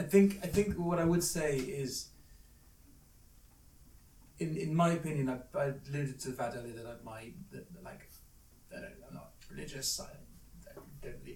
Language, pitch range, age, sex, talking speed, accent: English, 115-135 Hz, 30-49, male, 180 wpm, British